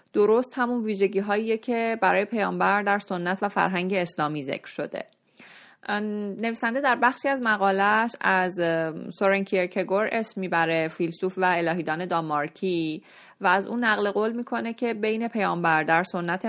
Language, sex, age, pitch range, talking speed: Persian, female, 30-49, 170-210 Hz, 140 wpm